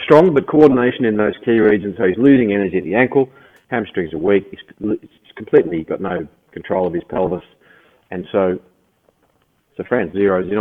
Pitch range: 90-105 Hz